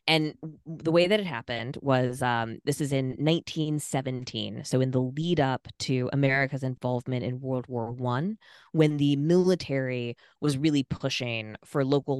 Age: 20-39